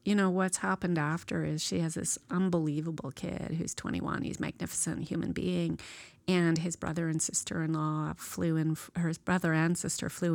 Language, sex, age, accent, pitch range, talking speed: English, female, 30-49, American, 160-185 Hz, 170 wpm